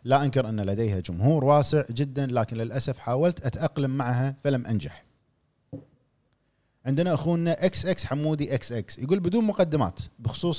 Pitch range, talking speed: 120-145 Hz, 140 wpm